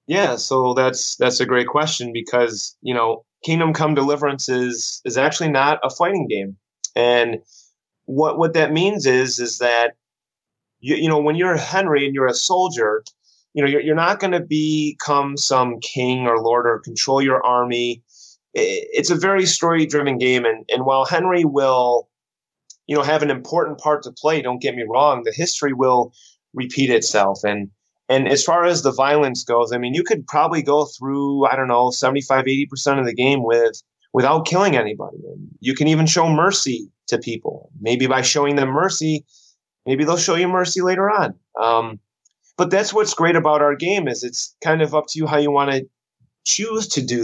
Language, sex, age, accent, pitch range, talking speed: English, male, 30-49, American, 125-155 Hz, 190 wpm